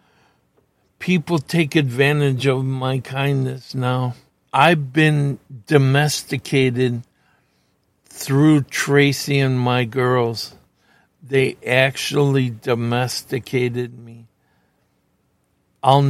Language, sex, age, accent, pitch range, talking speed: English, male, 60-79, American, 130-150 Hz, 75 wpm